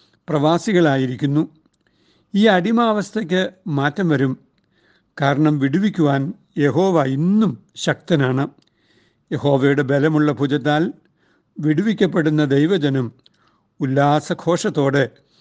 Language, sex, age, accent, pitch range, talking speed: Malayalam, male, 60-79, native, 140-170 Hz, 60 wpm